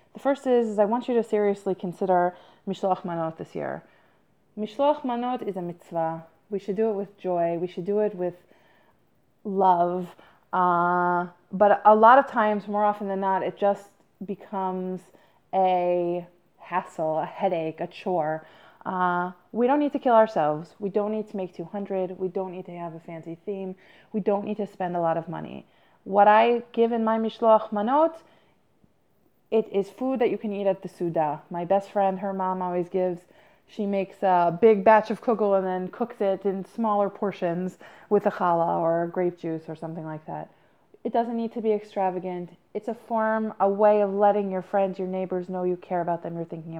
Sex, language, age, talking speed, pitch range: female, English, 30-49, 195 wpm, 175-215 Hz